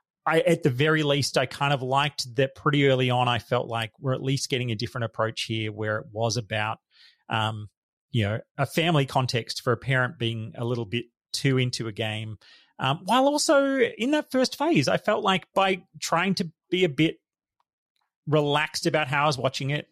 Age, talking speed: 30-49, 200 wpm